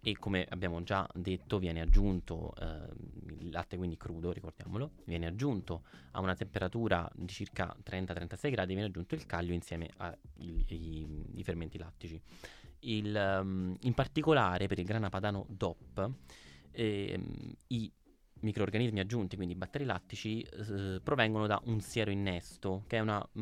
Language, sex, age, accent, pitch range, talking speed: Italian, male, 20-39, native, 90-110 Hz, 135 wpm